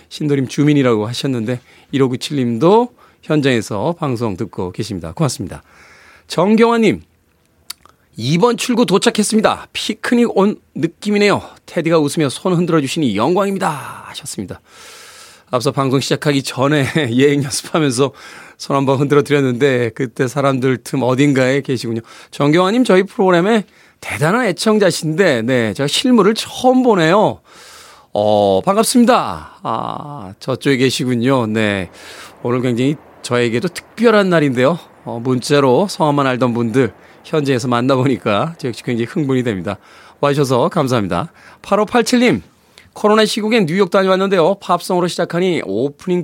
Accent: native